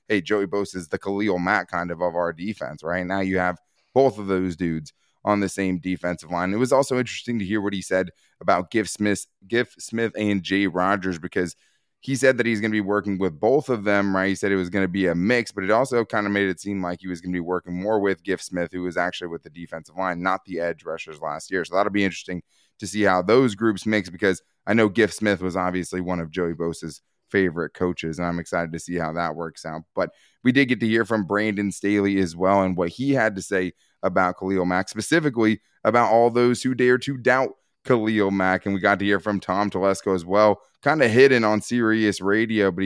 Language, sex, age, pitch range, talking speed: English, male, 20-39, 90-110 Hz, 245 wpm